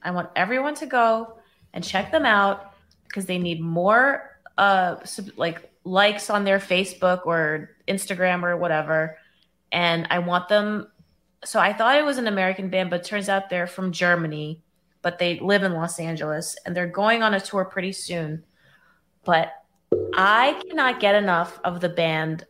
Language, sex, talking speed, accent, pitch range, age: English, female, 175 wpm, American, 170-200 Hz, 20-39